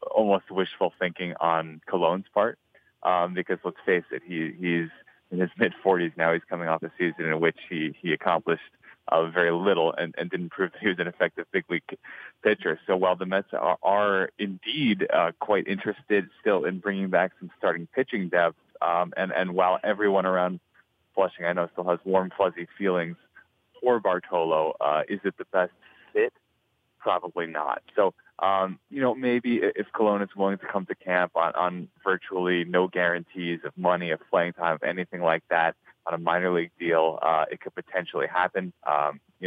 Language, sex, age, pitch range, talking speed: English, male, 30-49, 85-95 Hz, 185 wpm